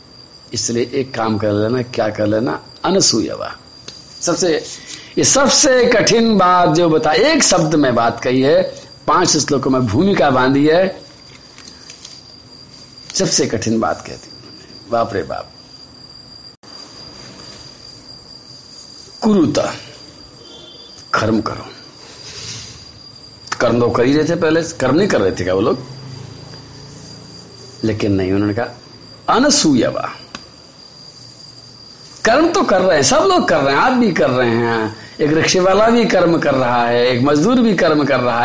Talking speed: 135 wpm